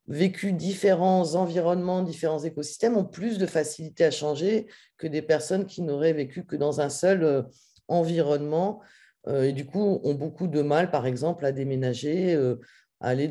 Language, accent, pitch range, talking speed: French, French, 150-185 Hz, 160 wpm